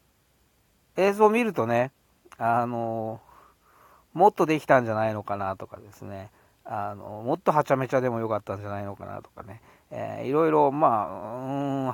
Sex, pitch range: male, 105-150 Hz